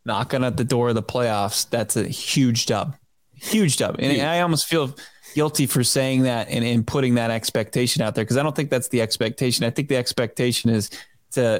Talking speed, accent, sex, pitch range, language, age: 205 wpm, American, male, 115-135 Hz, English, 20-39